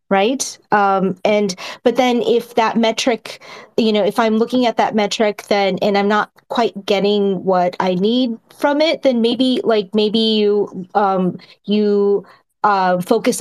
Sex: female